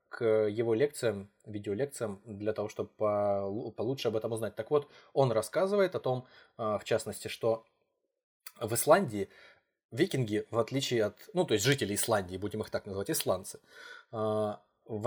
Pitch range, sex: 105-130 Hz, male